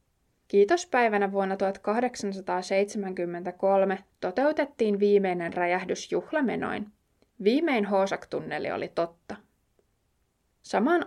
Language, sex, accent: Finnish, female, native